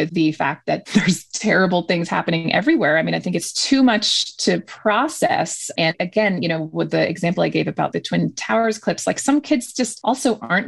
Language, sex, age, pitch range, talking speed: English, female, 30-49, 170-220 Hz, 210 wpm